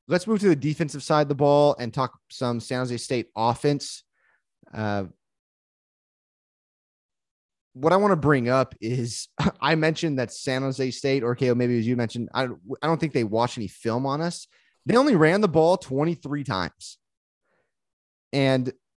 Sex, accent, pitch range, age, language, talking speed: male, American, 120-155 Hz, 30-49, English, 175 wpm